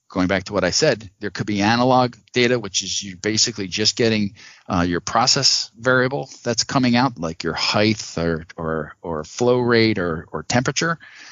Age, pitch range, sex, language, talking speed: 50-69, 90-110 Hz, male, English, 185 wpm